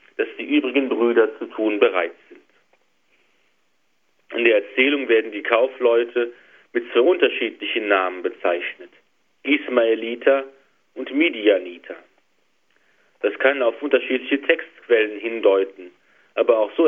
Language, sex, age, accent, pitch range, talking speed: German, male, 40-59, German, 115-150 Hz, 110 wpm